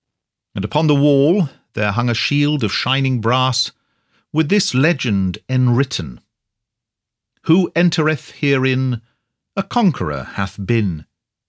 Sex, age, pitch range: male, 50-69, 105-140 Hz